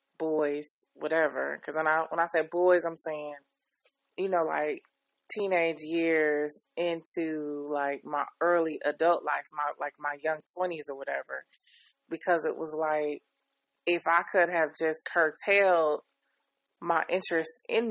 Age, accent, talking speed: 20-39, American, 140 wpm